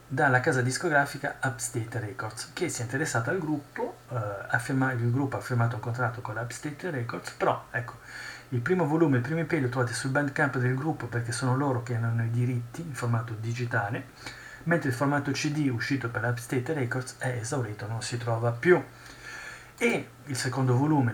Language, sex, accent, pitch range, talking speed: Italian, male, native, 115-135 Hz, 180 wpm